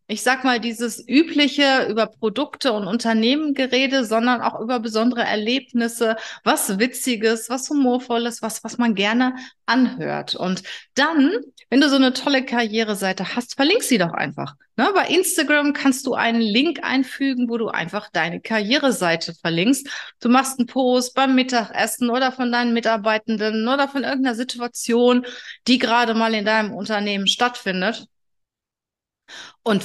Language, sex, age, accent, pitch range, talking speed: German, female, 30-49, German, 220-270 Hz, 145 wpm